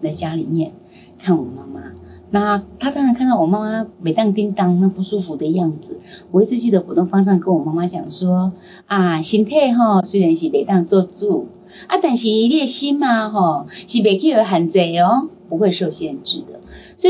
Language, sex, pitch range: Chinese, female, 175-235 Hz